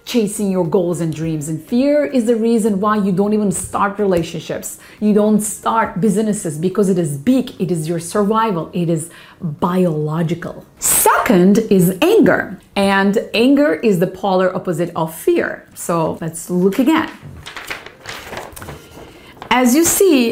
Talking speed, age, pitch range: 145 wpm, 30-49, 185-235 Hz